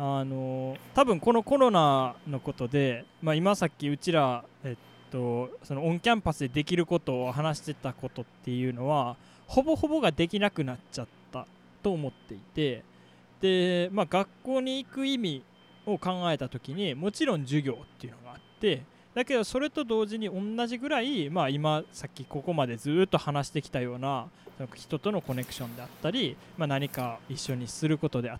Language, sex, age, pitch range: Japanese, male, 20-39, 135-220 Hz